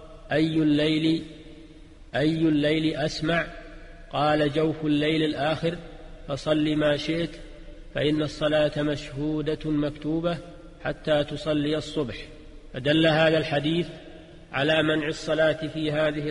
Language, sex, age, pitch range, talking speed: Arabic, male, 40-59, 145-155 Hz, 100 wpm